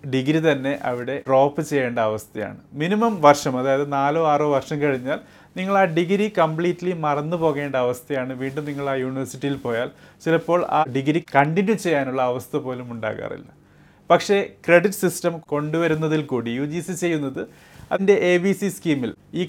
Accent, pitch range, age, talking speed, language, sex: native, 130-170 Hz, 30-49, 130 wpm, Malayalam, male